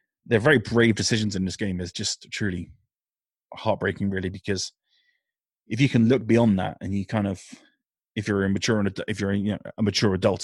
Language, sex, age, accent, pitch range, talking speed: English, male, 20-39, British, 100-115 Hz, 165 wpm